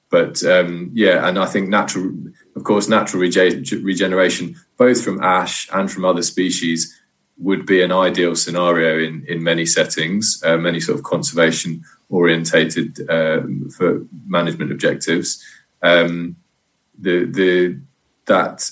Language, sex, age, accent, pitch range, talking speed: English, male, 20-39, British, 85-90 Hz, 135 wpm